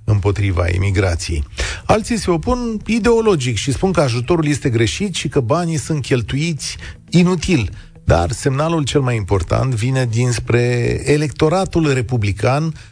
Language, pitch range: Romanian, 110-155 Hz